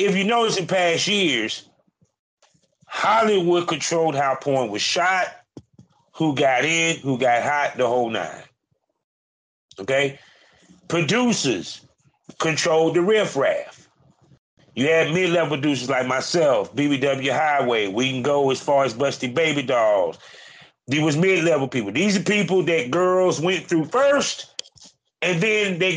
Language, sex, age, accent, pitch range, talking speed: English, male, 30-49, American, 135-180 Hz, 135 wpm